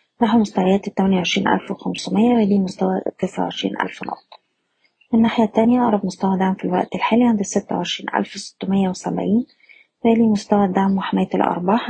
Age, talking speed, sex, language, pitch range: 20-39, 120 wpm, female, Arabic, 190-220 Hz